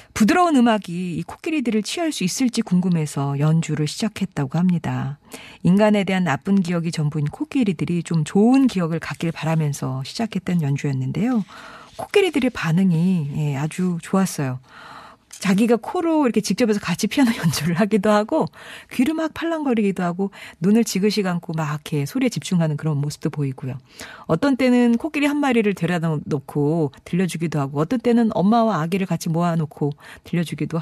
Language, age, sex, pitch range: Korean, 40-59, female, 150-215 Hz